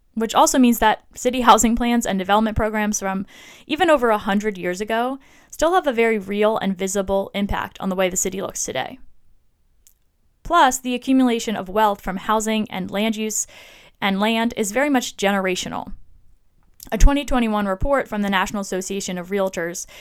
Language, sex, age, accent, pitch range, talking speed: English, female, 10-29, American, 190-230 Hz, 170 wpm